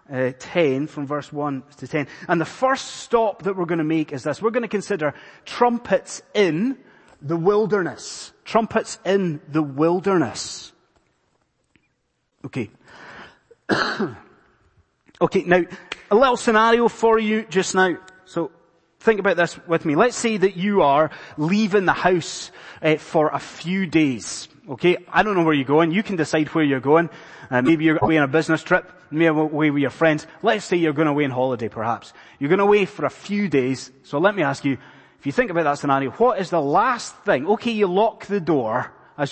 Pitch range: 145-190 Hz